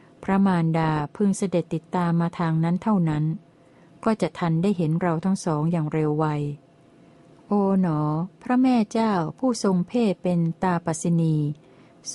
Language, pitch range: Thai, 160-185 Hz